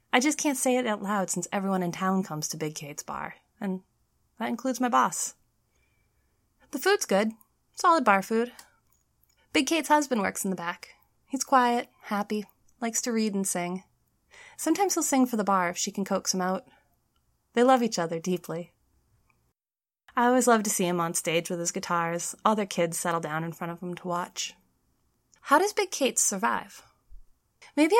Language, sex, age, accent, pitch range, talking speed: English, female, 20-39, American, 185-260 Hz, 185 wpm